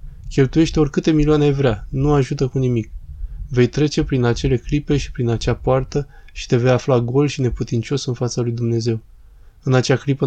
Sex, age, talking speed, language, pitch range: male, 20-39, 180 wpm, Romanian, 115-140 Hz